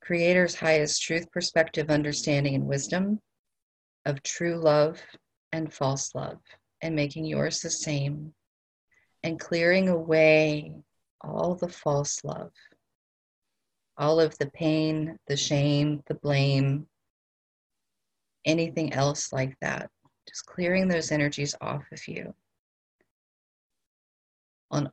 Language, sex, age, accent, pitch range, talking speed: English, female, 40-59, American, 145-160 Hz, 110 wpm